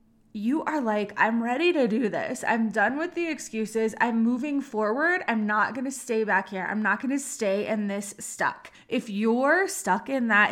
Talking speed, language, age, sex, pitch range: 195 wpm, English, 20-39, female, 210-260 Hz